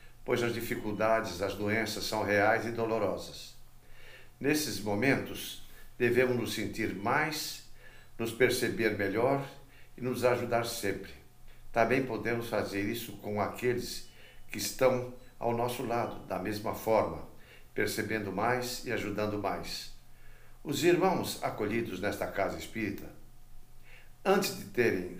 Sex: male